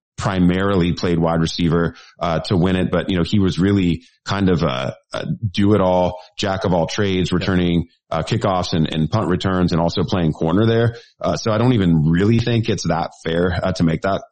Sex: male